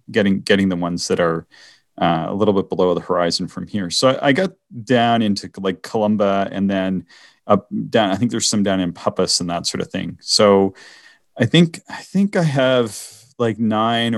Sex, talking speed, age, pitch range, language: male, 200 wpm, 30-49, 95-130 Hz, English